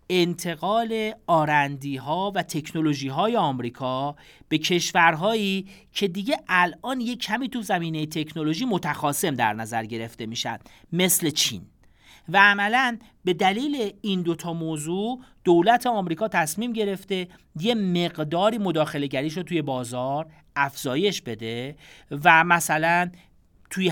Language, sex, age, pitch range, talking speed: Persian, male, 40-59, 135-180 Hz, 110 wpm